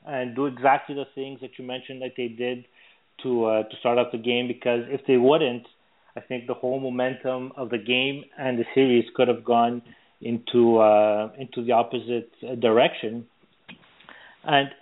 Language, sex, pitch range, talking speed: English, male, 120-140 Hz, 175 wpm